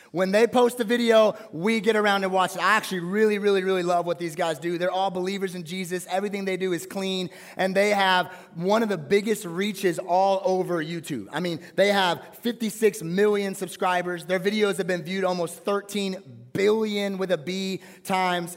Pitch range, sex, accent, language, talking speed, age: 175-205 Hz, male, American, English, 195 wpm, 30-49